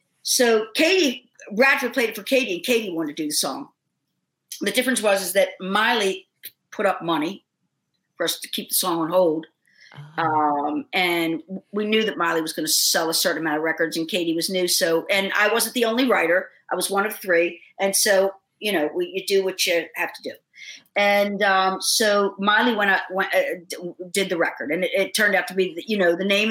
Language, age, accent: English, 50-69, American